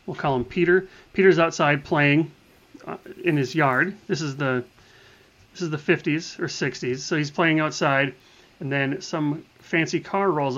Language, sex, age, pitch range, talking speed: English, male, 30-49, 125-165 Hz, 165 wpm